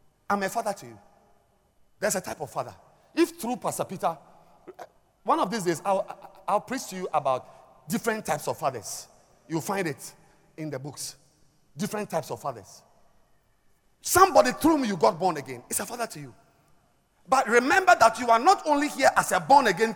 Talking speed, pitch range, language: 185 wpm, 135-225 Hz, English